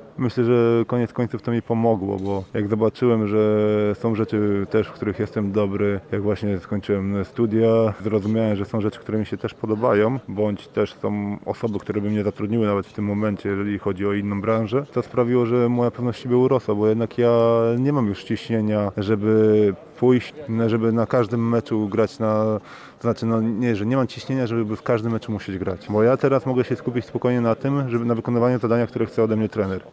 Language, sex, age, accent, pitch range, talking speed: Polish, male, 20-39, native, 105-120 Hz, 200 wpm